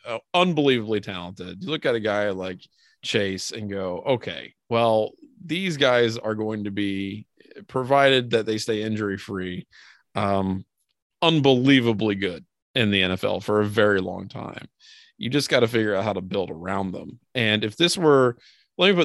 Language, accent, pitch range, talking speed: English, American, 100-130 Hz, 175 wpm